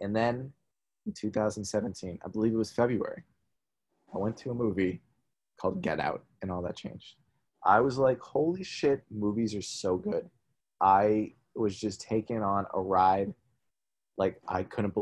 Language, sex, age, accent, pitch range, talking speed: English, male, 20-39, American, 100-125 Hz, 160 wpm